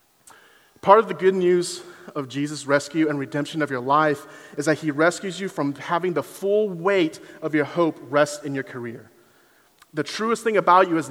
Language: English